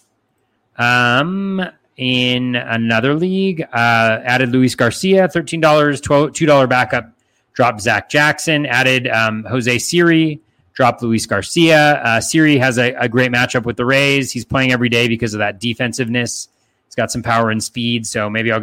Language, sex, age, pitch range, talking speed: English, male, 30-49, 110-135 Hz, 155 wpm